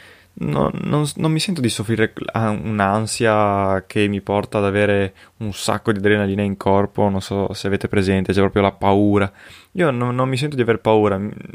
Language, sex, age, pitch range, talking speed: Italian, male, 20-39, 95-110 Hz, 190 wpm